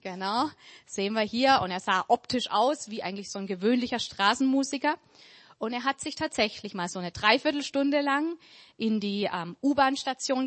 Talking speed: 165 wpm